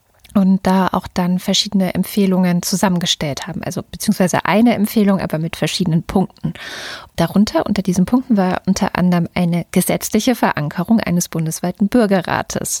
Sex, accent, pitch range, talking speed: female, German, 170-210 Hz, 135 wpm